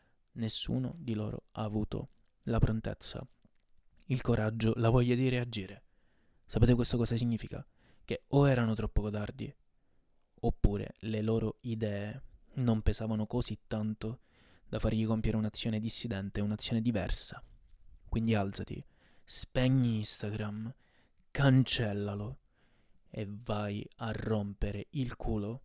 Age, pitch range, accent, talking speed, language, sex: 20-39, 100-120 Hz, native, 110 wpm, Italian, male